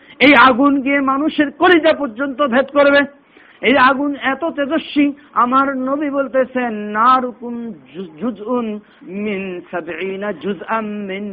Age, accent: 50-69, native